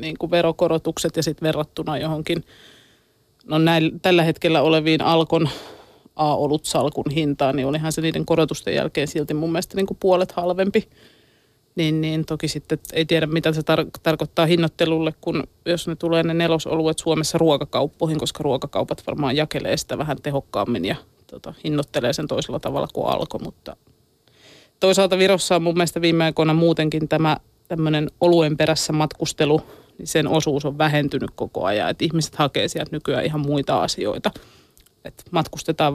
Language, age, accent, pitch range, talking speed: Finnish, 30-49, native, 150-165 Hz, 155 wpm